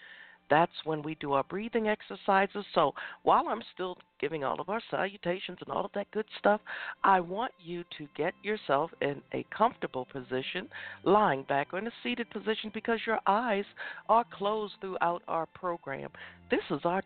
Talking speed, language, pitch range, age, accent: 175 wpm, English, 140-190 Hz, 60-79, American